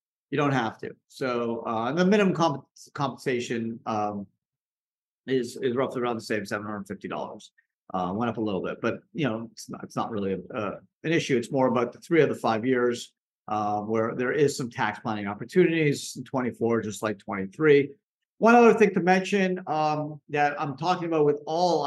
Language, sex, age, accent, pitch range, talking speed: English, male, 50-69, American, 135-175 Hz, 190 wpm